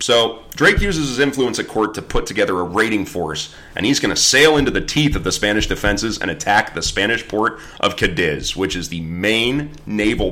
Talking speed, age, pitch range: 215 wpm, 30-49, 85-125 Hz